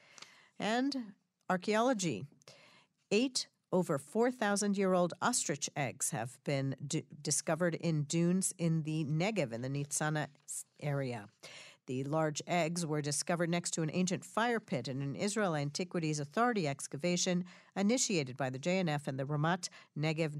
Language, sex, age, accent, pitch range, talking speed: English, female, 50-69, American, 150-195 Hz, 130 wpm